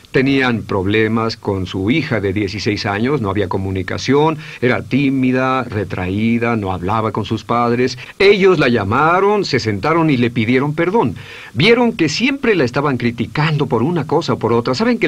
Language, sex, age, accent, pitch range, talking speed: Spanish, male, 50-69, Mexican, 115-165 Hz, 165 wpm